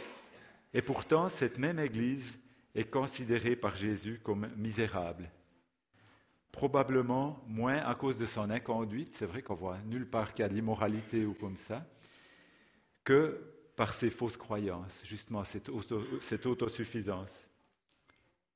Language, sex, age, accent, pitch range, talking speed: French, male, 50-69, French, 105-130 Hz, 135 wpm